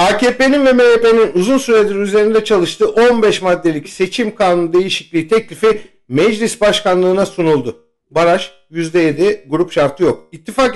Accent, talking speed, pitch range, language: Turkish, 125 wpm, 160-240 Hz, German